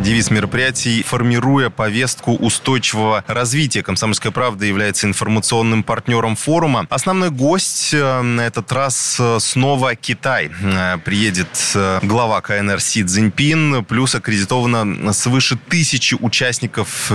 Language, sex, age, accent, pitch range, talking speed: Russian, male, 20-39, native, 105-130 Hz, 100 wpm